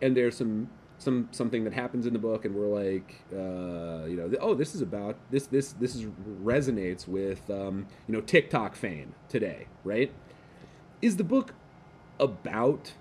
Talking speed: 175 wpm